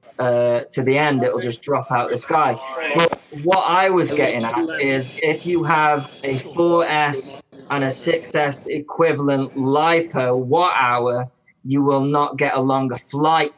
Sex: male